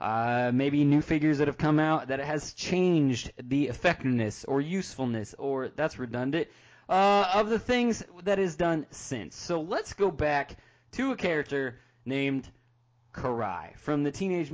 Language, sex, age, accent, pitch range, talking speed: English, male, 20-39, American, 130-190 Hz, 160 wpm